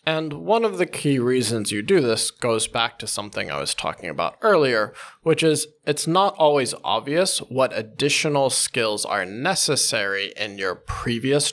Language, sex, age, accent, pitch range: Chinese, male, 20-39, American, 115-150 Hz